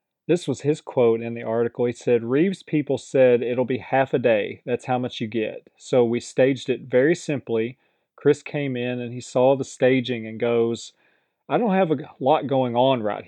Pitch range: 115-135 Hz